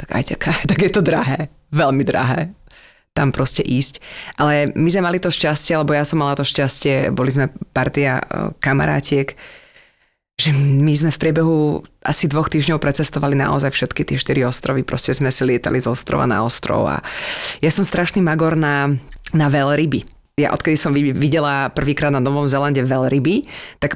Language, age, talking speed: Slovak, 30-49, 175 wpm